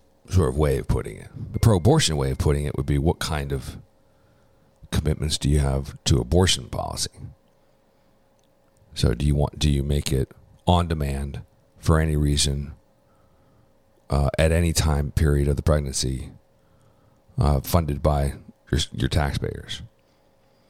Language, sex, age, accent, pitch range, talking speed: English, male, 50-69, American, 70-95 Hz, 150 wpm